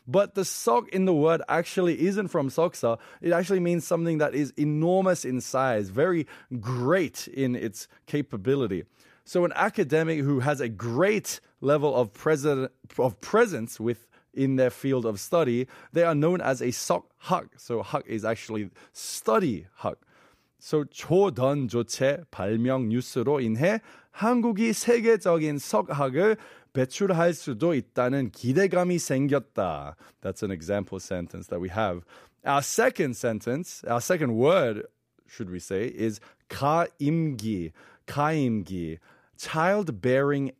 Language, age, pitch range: Korean, 20-39, 115-170 Hz